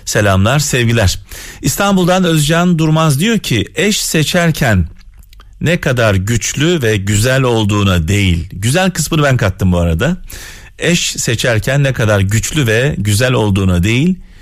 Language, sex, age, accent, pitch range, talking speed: Turkish, male, 40-59, native, 95-140 Hz, 130 wpm